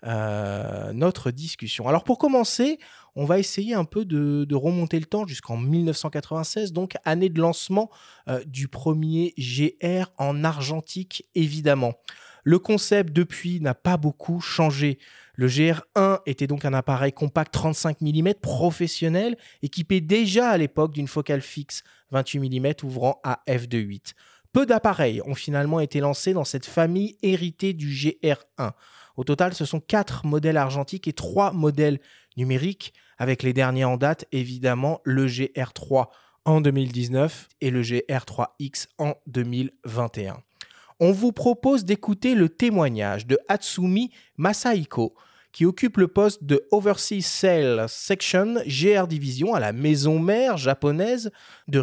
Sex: male